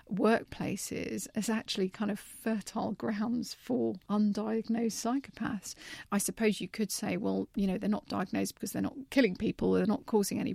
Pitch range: 200-235 Hz